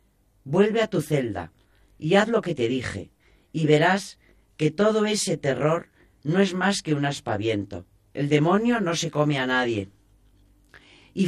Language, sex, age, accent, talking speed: Spanish, female, 40-59, Spanish, 160 wpm